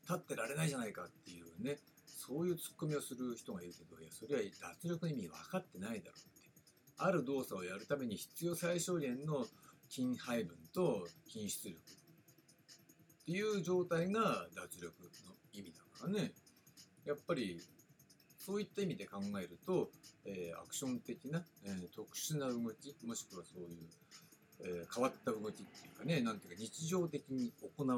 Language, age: Japanese, 60-79